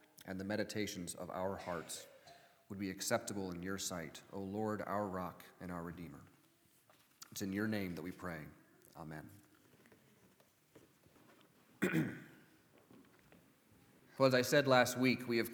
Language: English